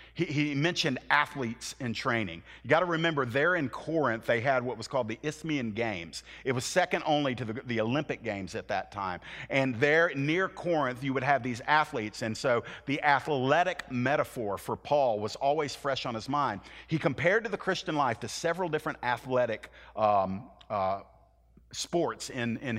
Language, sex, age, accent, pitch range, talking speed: English, male, 50-69, American, 125-165 Hz, 185 wpm